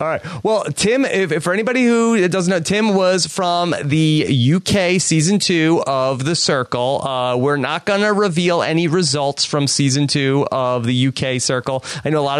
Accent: American